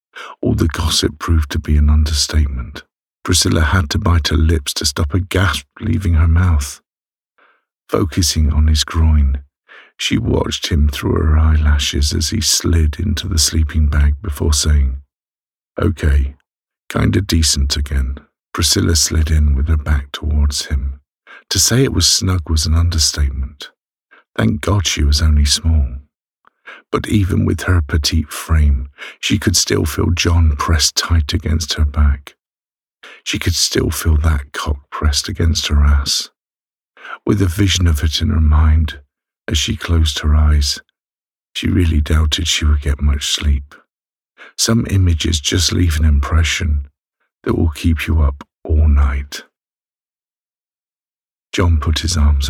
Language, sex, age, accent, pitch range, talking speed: English, male, 50-69, British, 75-85 Hz, 150 wpm